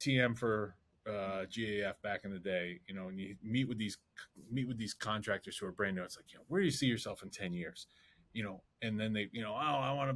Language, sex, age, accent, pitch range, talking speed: English, male, 30-49, American, 100-135 Hz, 270 wpm